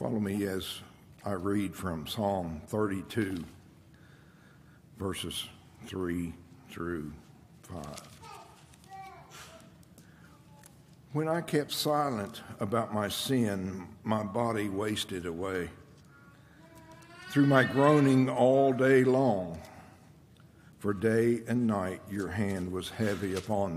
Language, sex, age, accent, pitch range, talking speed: English, male, 60-79, American, 95-130 Hz, 95 wpm